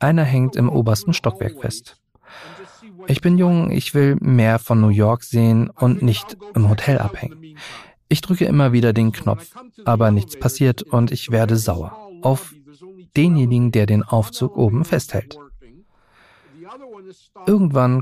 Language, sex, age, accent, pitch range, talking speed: German, male, 40-59, German, 115-150 Hz, 140 wpm